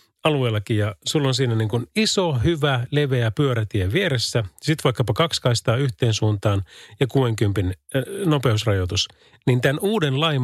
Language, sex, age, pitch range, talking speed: Finnish, male, 30-49, 105-145 Hz, 140 wpm